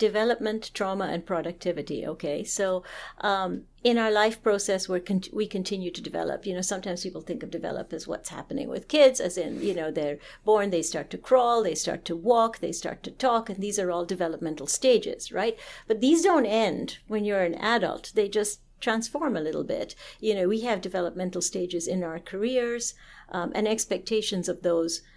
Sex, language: female, English